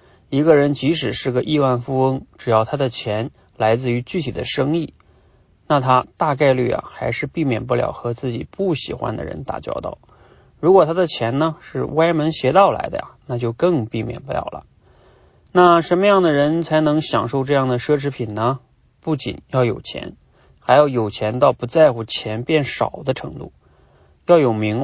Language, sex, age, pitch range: Chinese, male, 30-49, 115-155 Hz